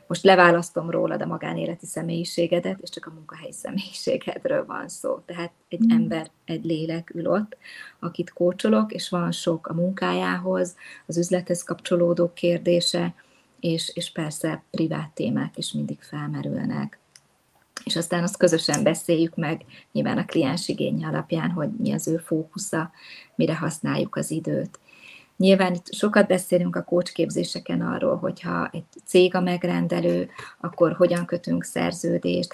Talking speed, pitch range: 140 wpm, 165-180 Hz